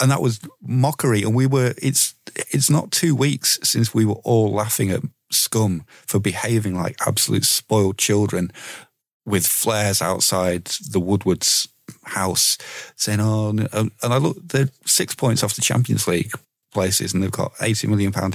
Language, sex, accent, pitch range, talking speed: English, male, British, 95-125 Hz, 165 wpm